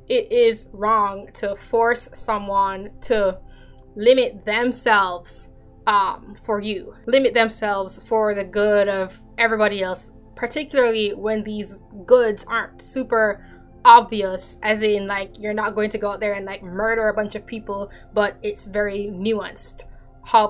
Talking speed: 145 wpm